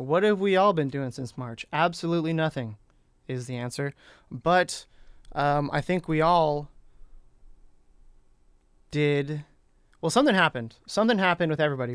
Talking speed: 135 wpm